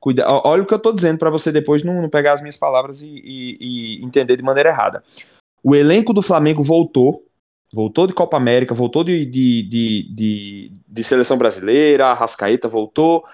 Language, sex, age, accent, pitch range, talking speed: Portuguese, male, 20-39, Brazilian, 130-165 Hz, 170 wpm